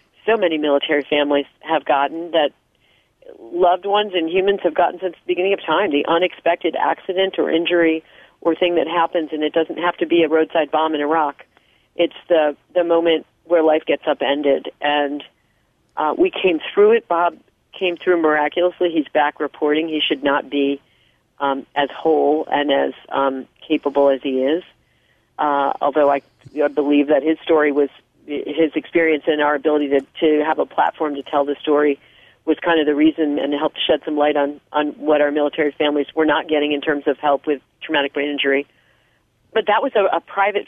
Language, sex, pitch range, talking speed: English, female, 145-170 Hz, 190 wpm